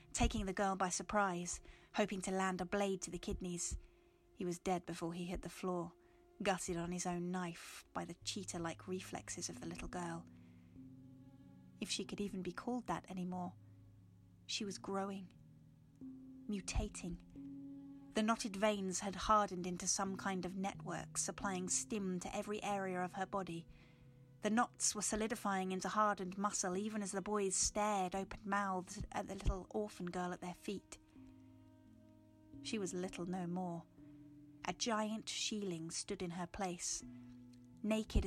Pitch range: 145-200 Hz